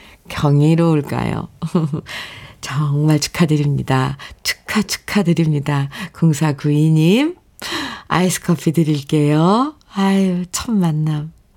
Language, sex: Korean, female